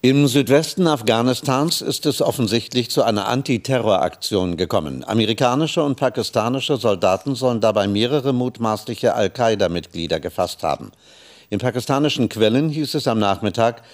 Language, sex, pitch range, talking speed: German, male, 95-130 Hz, 120 wpm